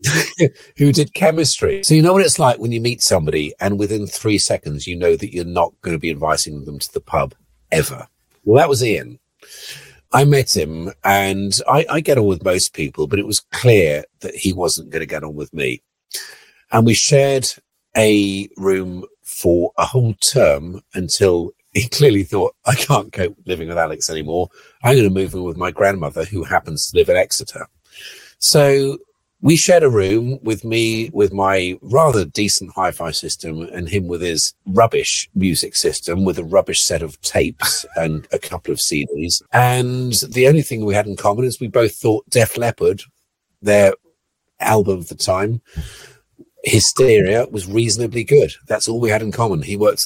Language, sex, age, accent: English, male, 50-69, British